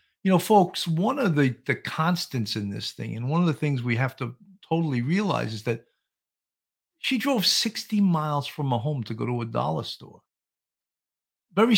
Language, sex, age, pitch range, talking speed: English, male, 50-69, 130-185 Hz, 190 wpm